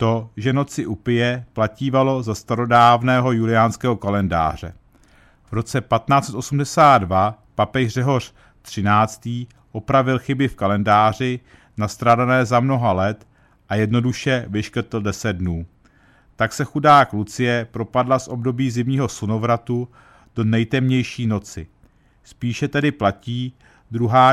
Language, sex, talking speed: Czech, male, 110 wpm